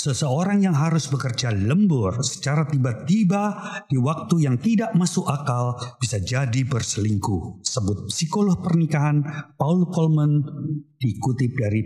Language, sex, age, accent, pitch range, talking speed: Indonesian, male, 50-69, native, 115-170 Hz, 115 wpm